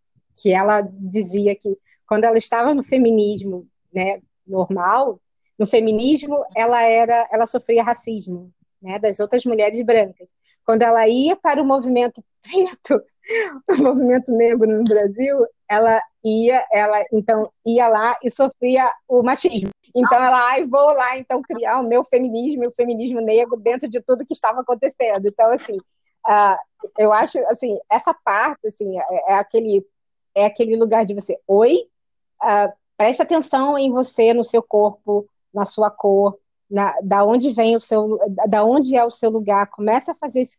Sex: female